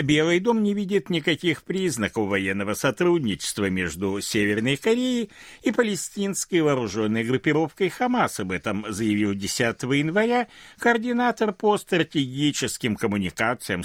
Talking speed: 110 wpm